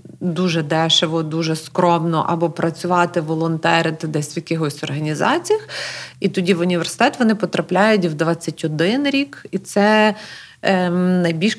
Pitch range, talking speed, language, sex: 165-195 Hz, 125 wpm, Ukrainian, female